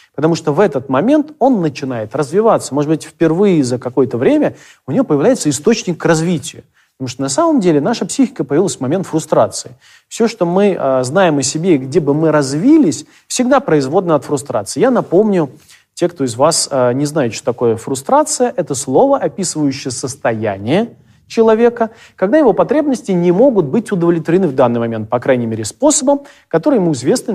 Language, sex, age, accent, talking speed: Russian, male, 30-49, native, 170 wpm